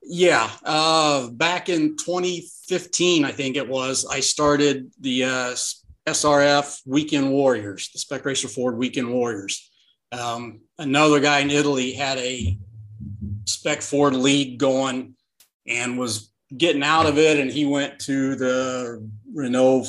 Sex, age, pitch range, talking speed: male, 40-59, 120-145 Hz, 135 wpm